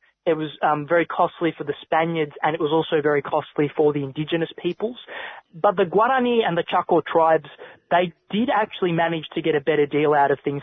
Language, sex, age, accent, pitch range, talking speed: English, male, 20-39, Australian, 145-180 Hz, 210 wpm